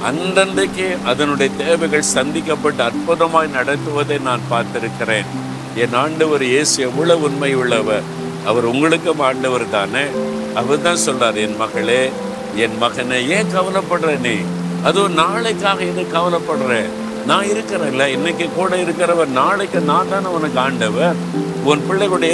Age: 50-69